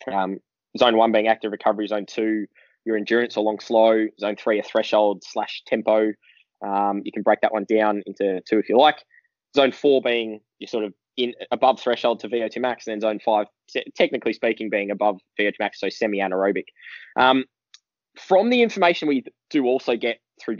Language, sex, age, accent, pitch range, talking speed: English, male, 10-29, Australian, 110-145 Hz, 185 wpm